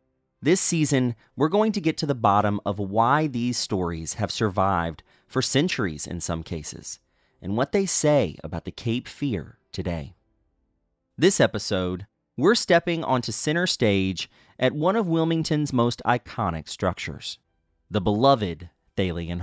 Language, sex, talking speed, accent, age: English, male, 140 wpm, American, 30-49